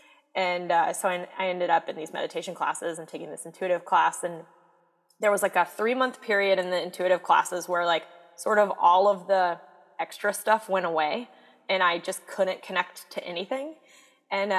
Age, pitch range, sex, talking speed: 20-39, 185-265 Hz, female, 195 wpm